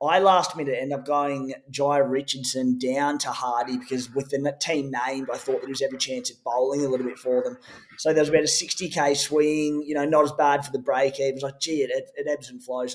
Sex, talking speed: male, 245 wpm